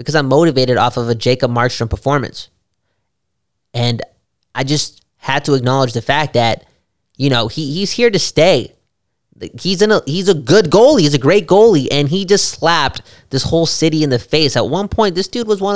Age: 20-39